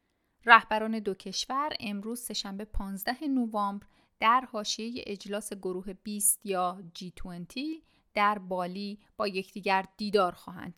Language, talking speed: Persian, 110 wpm